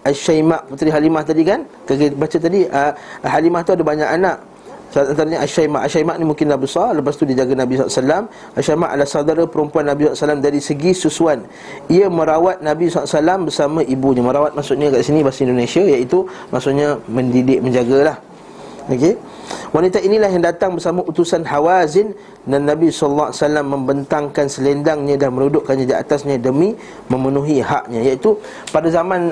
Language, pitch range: Malay, 135-170 Hz